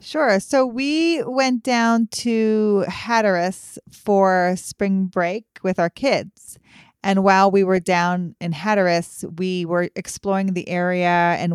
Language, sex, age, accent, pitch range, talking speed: English, female, 30-49, American, 180-220 Hz, 135 wpm